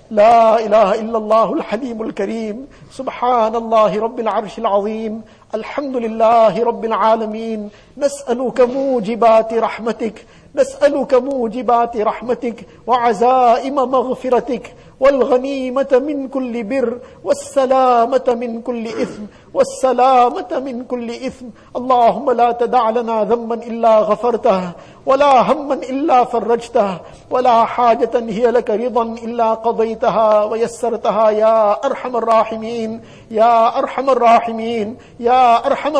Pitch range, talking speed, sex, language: 225-260 Hz, 105 wpm, male, English